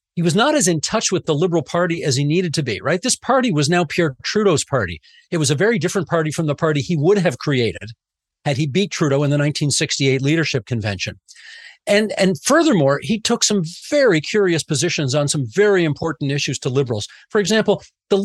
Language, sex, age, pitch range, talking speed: English, male, 40-59, 140-185 Hz, 210 wpm